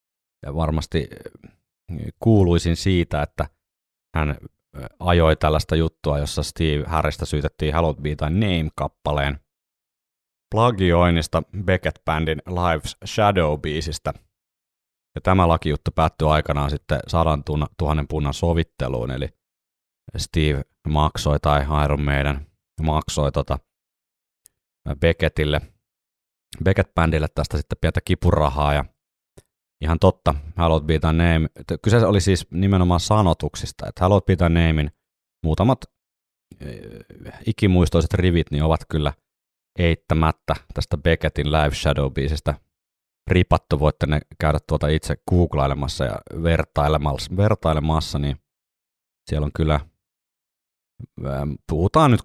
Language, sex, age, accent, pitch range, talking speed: Finnish, male, 30-49, native, 75-85 Hz, 100 wpm